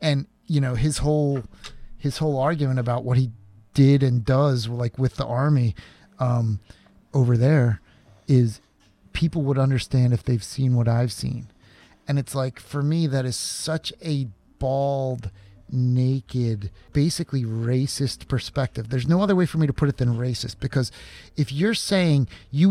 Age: 30-49